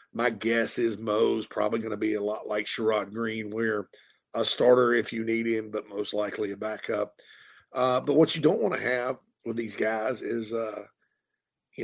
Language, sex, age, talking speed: English, male, 40-59, 200 wpm